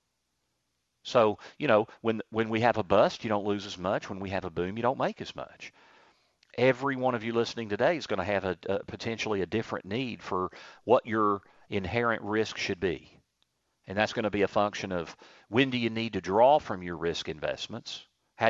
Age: 40-59